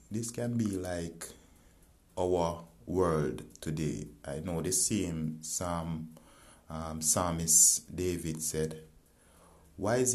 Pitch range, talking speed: 75-95 Hz, 105 wpm